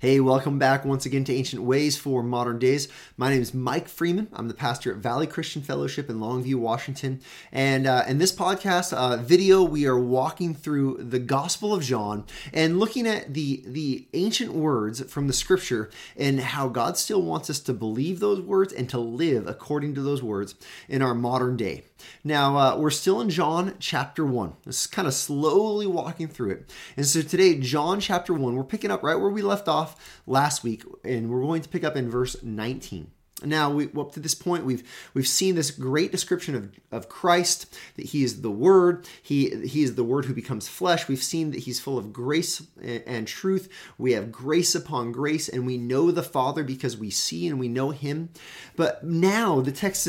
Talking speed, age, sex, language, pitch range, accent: 205 wpm, 20-39, male, English, 125-165 Hz, American